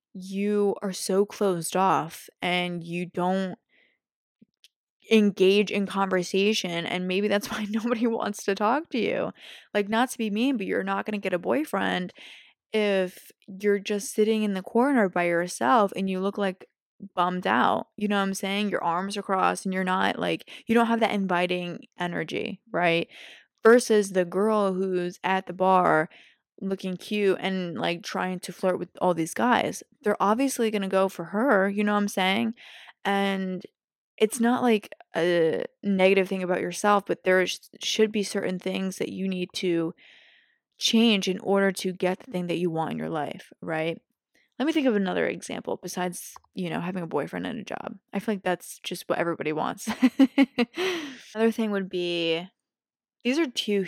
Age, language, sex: 20-39, English, female